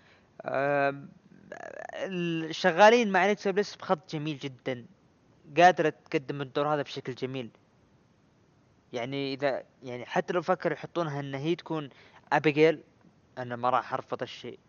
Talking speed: 120 wpm